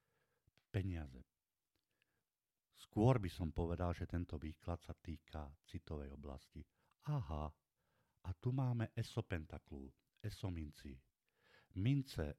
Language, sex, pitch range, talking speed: Slovak, male, 80-100 Hz, 90 wpm